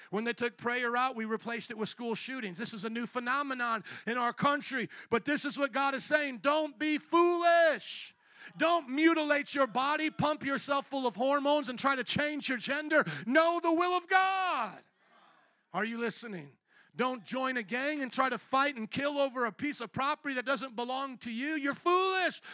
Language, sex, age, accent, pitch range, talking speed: English, male, 40-59, American, 205-265 Hz, 195 wpm